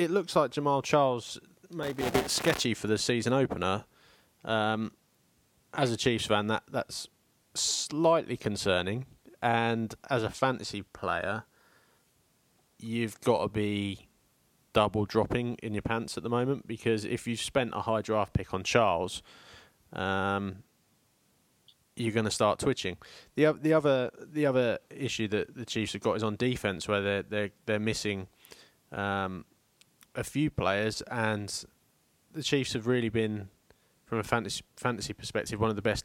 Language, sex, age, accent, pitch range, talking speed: English, male, 20-39, British, 105-125 Hz, 160 wpm